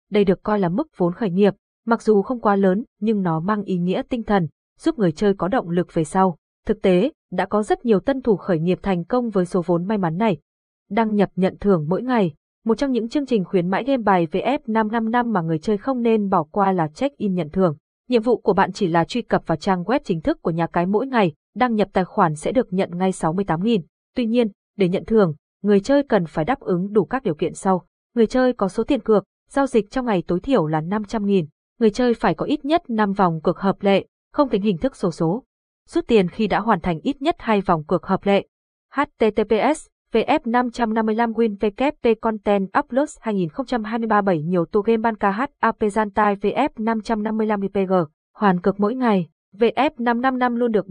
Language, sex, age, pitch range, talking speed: Vietnamese, female, 20-39, 185-235 Hz, 215 wpm